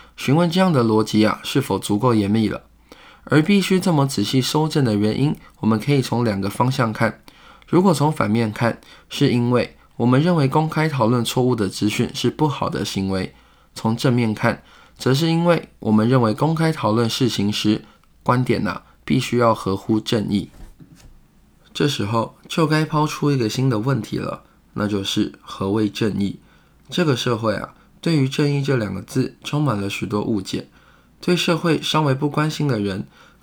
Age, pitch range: 20-39, 105-145 Hz